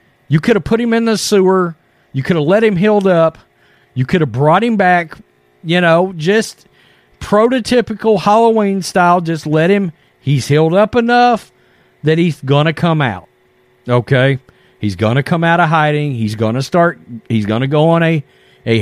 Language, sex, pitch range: English, male, 120-170 Hz